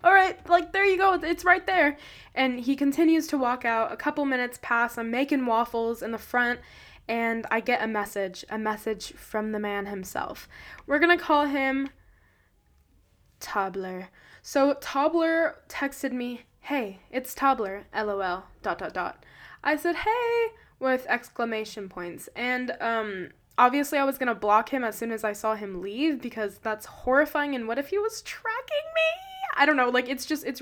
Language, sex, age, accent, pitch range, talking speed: English, female, 10-29, American, 215-285 Hz, 175 wpm